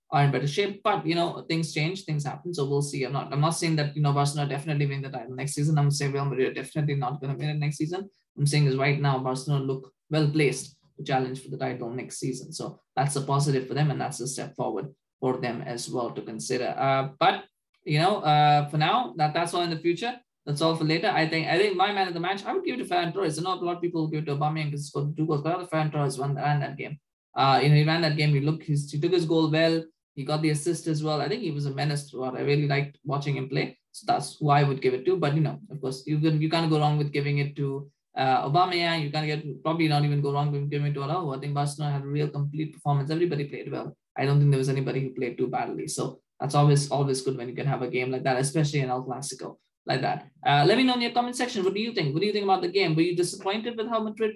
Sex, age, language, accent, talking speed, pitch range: male, 20-39, English, Indian, 290 wpm, 140-165 Hz